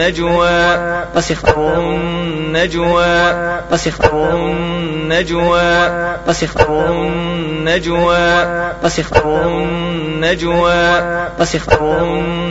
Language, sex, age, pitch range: Arabic, male, 30-49, 160-175 Hz